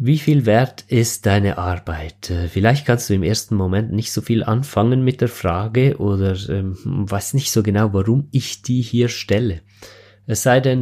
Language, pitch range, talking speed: German, 100-125 Hz, 185 wpm